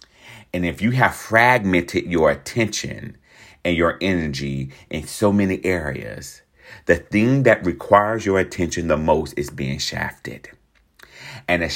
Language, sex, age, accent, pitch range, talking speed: English, male, 40-59, American, 75-105 Hz, 140 wpm